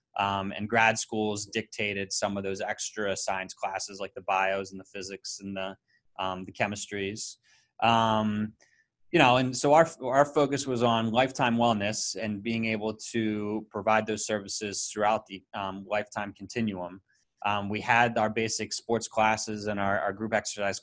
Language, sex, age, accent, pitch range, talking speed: English, male, 20-39, American, 100-115 Hz, 165 wpm